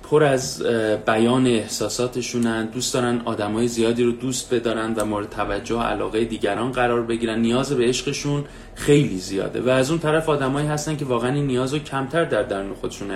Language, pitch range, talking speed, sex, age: Persian, 115-145 Hz, 170 wpm, male, 30-49